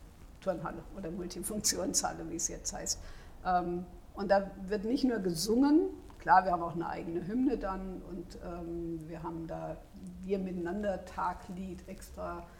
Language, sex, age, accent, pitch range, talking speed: German, female, 50-69, German, 170-210 Hz, 135 wpm